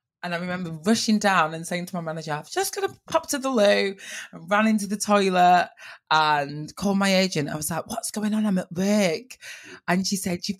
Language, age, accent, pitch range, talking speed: English, 20-39, British, 175-225 Hz, 225 wpm